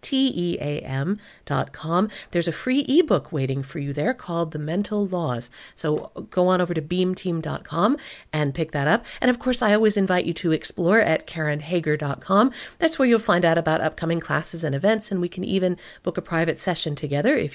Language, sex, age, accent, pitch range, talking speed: English, female, 50-69, American, 155-210 Hz, 185 wpm